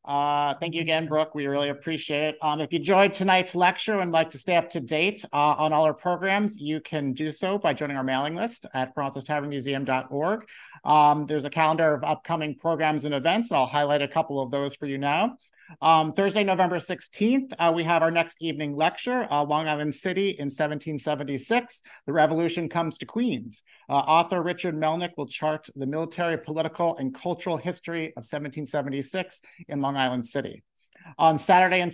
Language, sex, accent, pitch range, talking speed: English, male, American, 145-185 Hz, 185 wpm